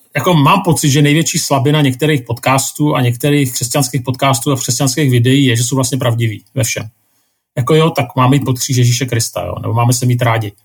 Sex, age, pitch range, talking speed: male, 40-59, 120-145 Hz, 205 wpm